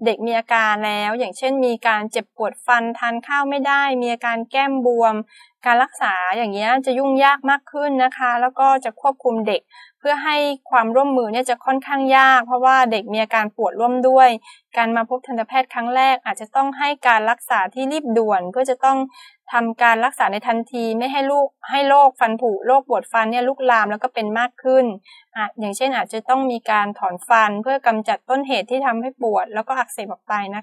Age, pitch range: 20-39, 220-265 Hz